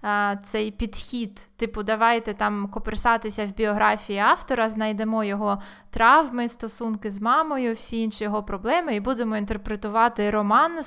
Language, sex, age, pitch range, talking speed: Ukrainian, female, 20-39, 210-250 Hz, 125 wpm